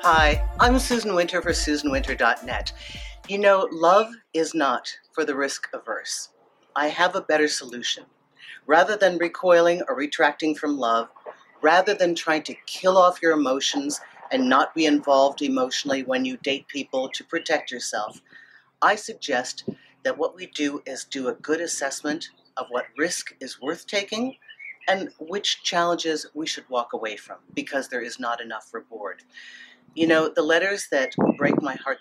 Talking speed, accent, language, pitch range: 160 wpm, American, English, 150-205 Hz